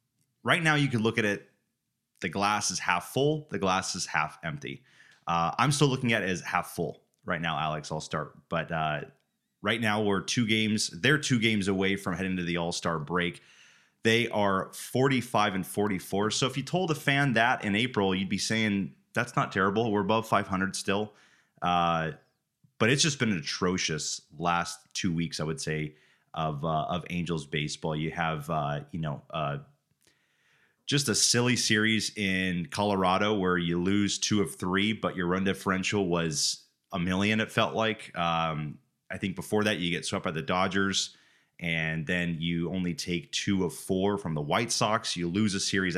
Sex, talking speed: male, 190 wpm